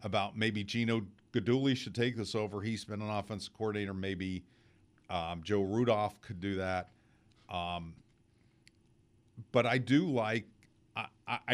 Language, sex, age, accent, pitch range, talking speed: English, male, 50-69, American, 100-120 Hz, 135 wpm